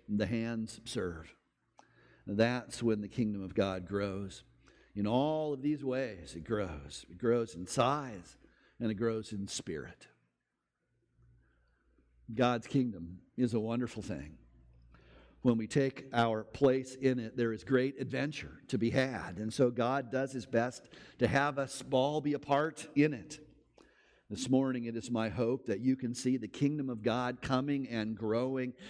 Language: English